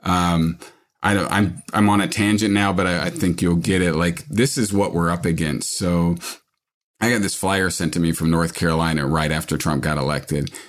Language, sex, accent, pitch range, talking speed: English, male, American, 85-100 Hz, 210 wpm